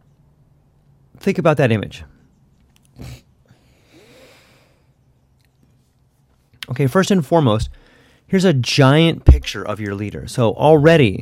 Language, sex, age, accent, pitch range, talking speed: English, male, 30-49, American, 90-140 Hz, 90 wpm